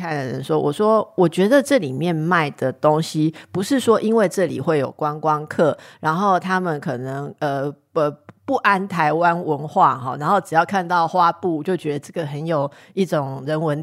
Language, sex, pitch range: Chinese, female, 150-190 Hz